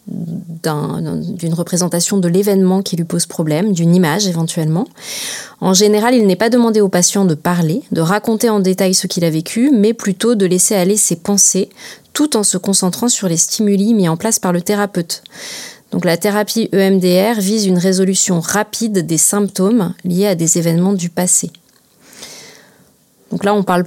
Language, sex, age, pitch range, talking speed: French, female, 30-49, 175-210 Hz, 175 wpm